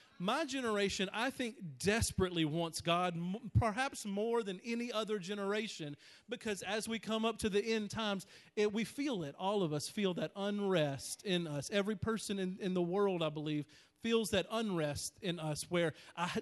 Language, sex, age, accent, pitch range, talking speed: English, male, 40-59, American, 155-205 Hz, 175 wpm